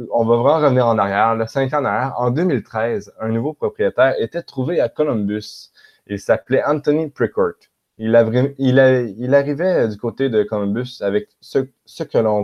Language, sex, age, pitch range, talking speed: French, male, 20-39, 105-125 Hz, 180 wpm